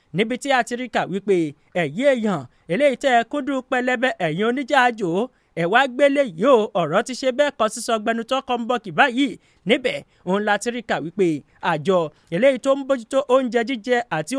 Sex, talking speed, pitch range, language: male, 185 wpm, 205-275 Hz, English